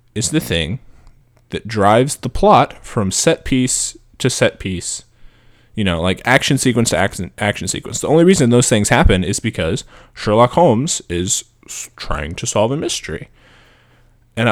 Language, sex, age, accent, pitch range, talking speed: English, male, 20-39, American, 100-125 Hz, 160 wpm